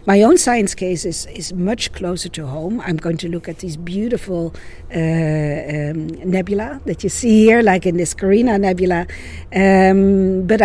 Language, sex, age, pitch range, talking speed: Danish, female, 50-69, 160-195 Hz, 175 wpm